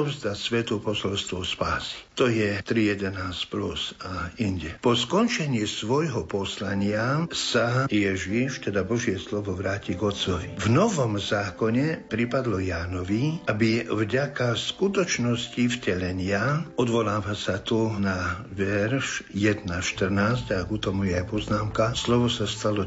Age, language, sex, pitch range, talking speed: 60-79, Slovak, male, 95-120 Hz, 120 wpm